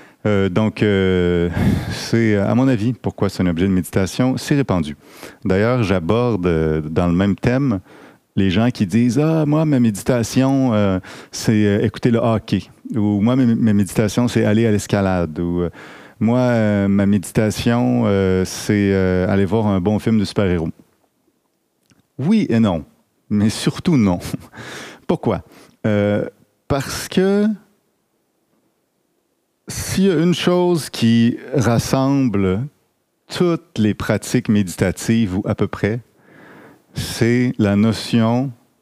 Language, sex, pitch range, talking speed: French, male, 100-125 Hz, 140 wpm